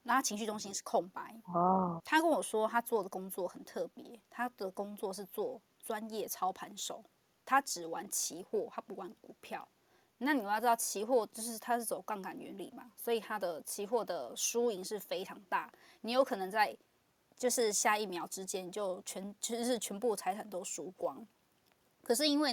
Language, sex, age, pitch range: Chinese, female, 20-39, 195-255 Hz